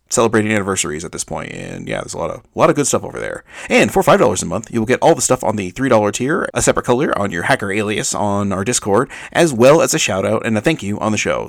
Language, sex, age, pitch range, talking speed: English, male, 30-49, 100-120 Hz, 305 wpm